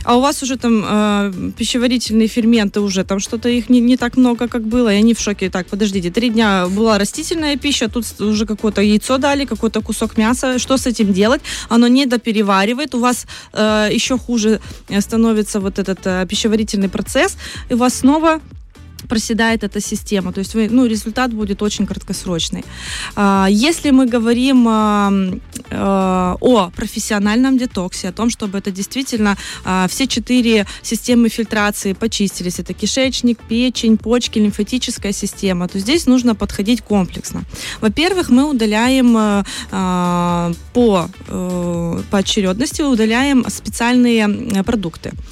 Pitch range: 200-245 Hz